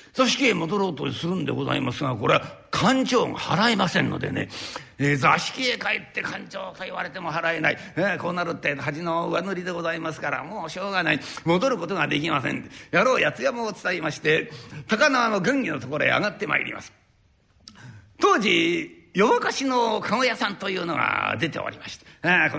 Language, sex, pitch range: Japanese, male, 160-245 Hz